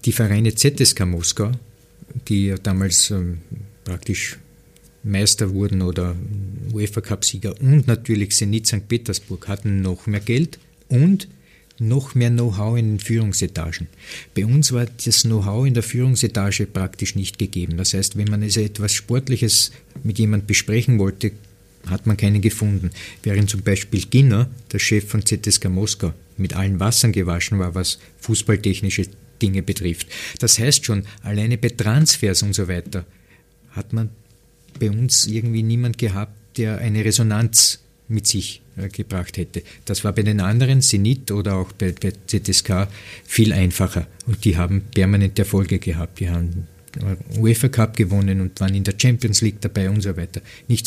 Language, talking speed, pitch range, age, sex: German, 150 wpm, 95-115 Hz, 50-69, male